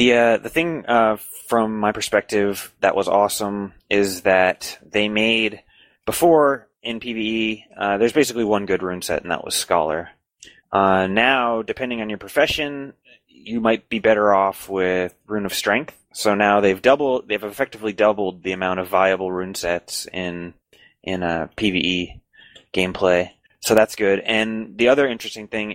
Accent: American